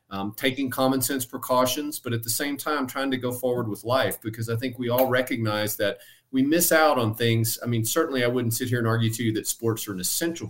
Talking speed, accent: 250 wpm, American